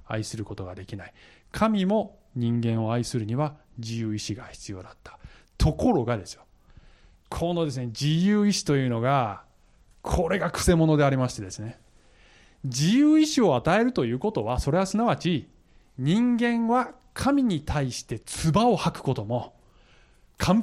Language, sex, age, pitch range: Japanese, male, 20-39, 110-190 Hz